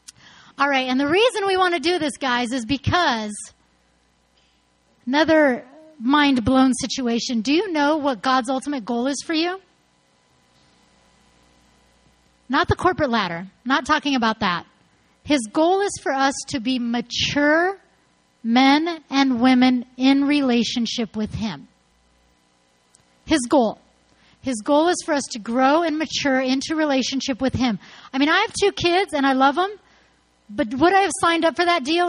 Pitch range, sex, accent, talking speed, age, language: 235-315 Hz, female, American, 155 wpm, 30-49, English